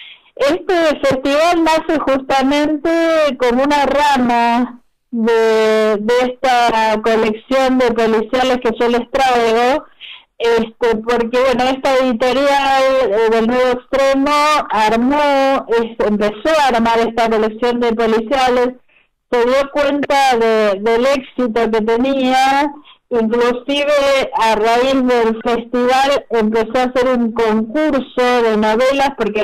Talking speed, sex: 110 wpm, female